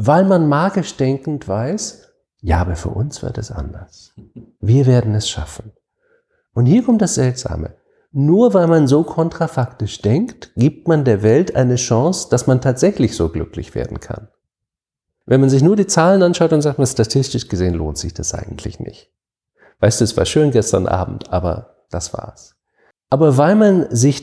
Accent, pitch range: German, 90-135 Hz